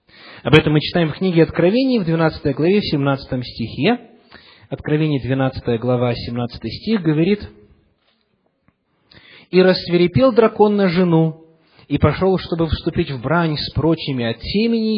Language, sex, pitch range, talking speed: English, male, 130-185 Hz, 130 wpm